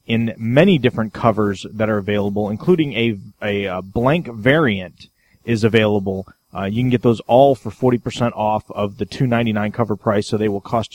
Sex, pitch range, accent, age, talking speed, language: male, 110-130 Hz, American, 30-49, 180 wpm, English